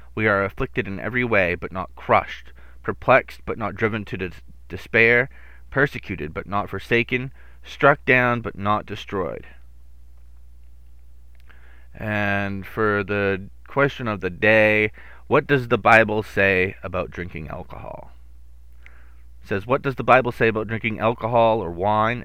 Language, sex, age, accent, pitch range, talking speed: English, male, 30-49, American, 85-115 Hz, 140 wpm